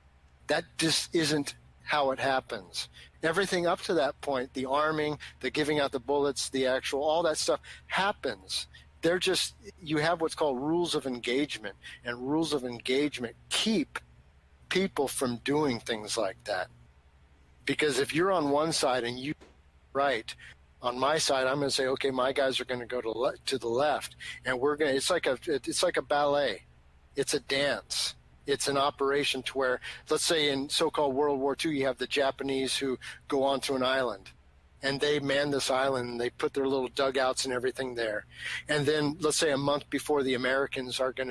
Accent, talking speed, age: American, 190 wpm, 50-69